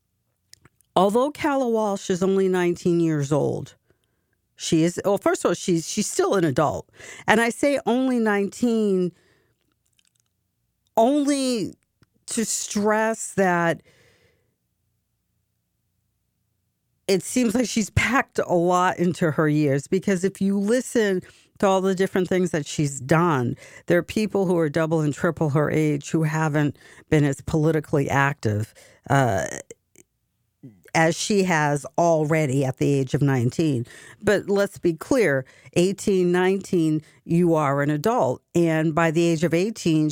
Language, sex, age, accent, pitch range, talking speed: English, female, 50-69, American, 140-180 Hz, 140 wpm